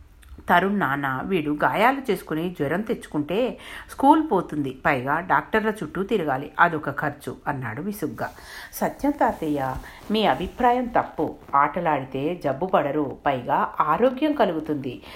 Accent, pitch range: native, 150-220 Hz